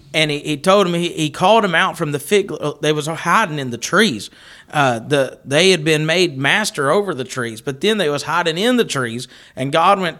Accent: American